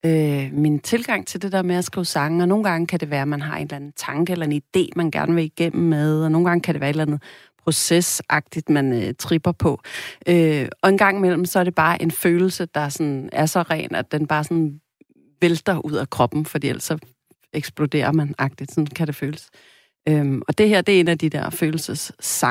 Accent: native